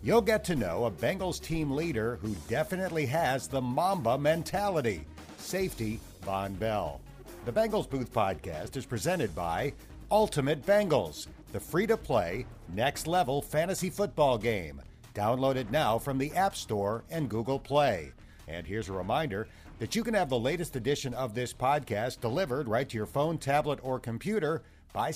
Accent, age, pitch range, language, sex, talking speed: American, 50-69, 95-155 Hz, English, male, 155 wpm